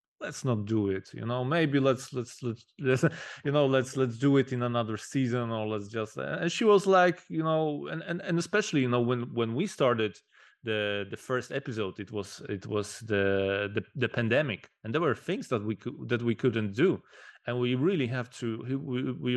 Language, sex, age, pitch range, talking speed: English, male, 30-49, 115-140 Hz, 210 wpm